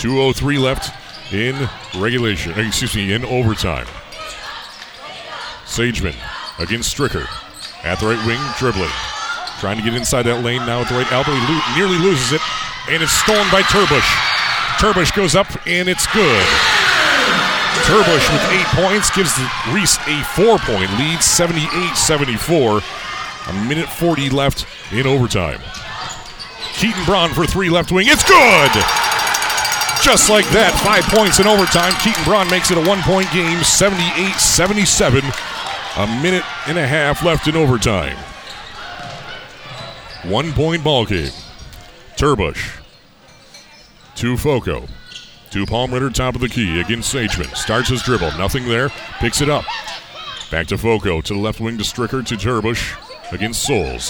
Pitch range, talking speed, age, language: 115-170 Hz, 140 wpm, 40-59, English